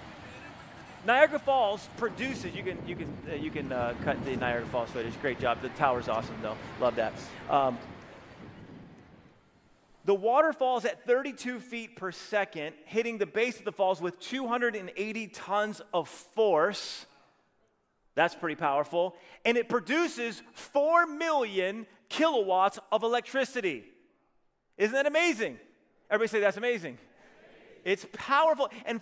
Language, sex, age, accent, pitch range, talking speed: English, male, 30-49, American, 190-270 Hz, 135 wpm